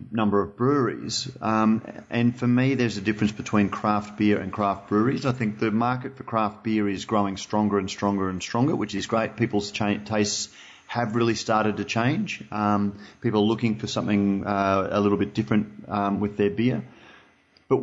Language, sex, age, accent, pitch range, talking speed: English, male, 30-49, Australian, 100-120 Hz, 190 wpm